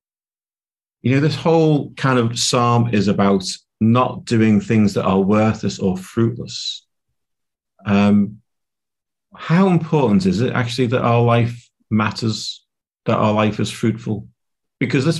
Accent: British